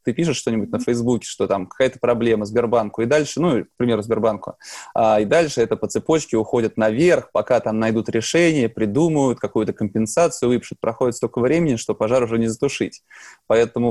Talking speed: 175 wpm